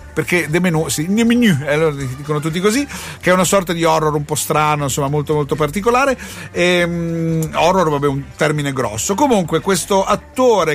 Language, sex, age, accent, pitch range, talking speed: Italian, male, 50-69, native, 145-190 Hz, 180 wpm